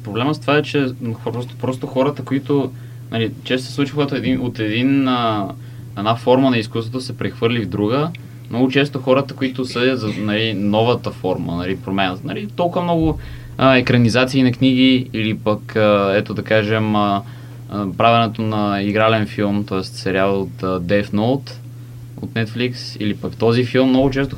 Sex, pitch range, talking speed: male, 105-125 Hz, 155 wpm